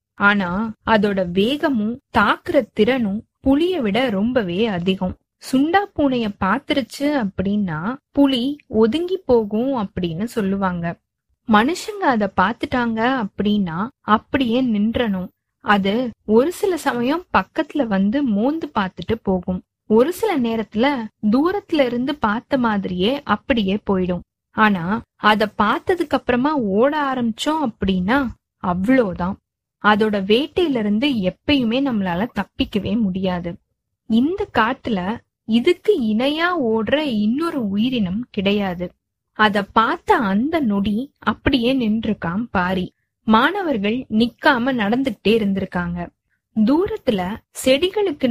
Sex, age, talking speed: female, 20-39, 95 wpm